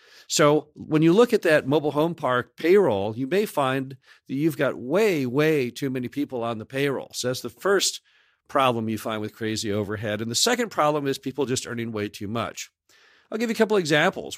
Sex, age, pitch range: male, 50-69, 115-155 Hz